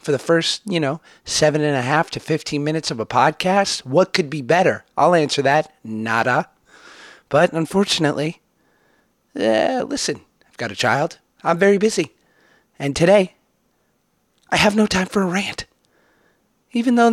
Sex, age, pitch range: male, 30-49, 130-170 Hz